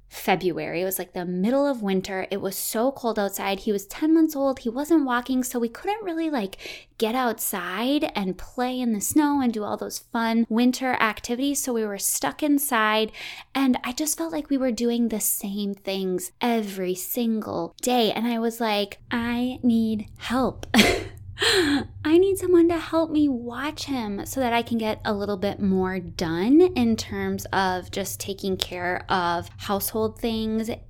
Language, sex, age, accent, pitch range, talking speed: English, female, 20-39, American, 200-260 Hz, 180 wpm